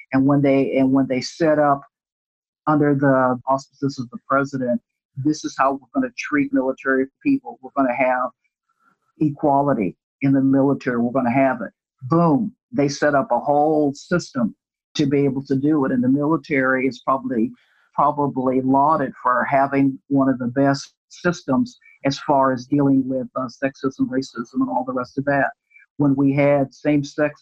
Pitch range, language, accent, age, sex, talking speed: 135-150 Hz, English, American, 50-69, male, 170 wpm